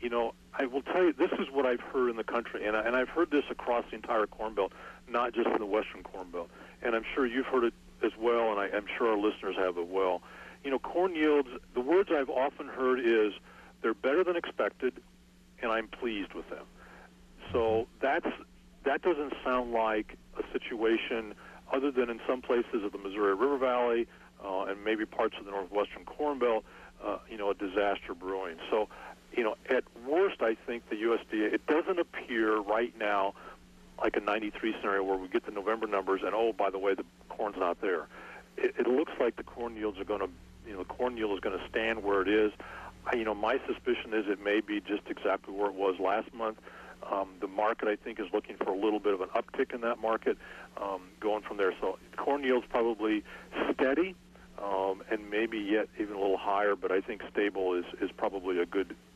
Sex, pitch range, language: male, 95-120 Hz, English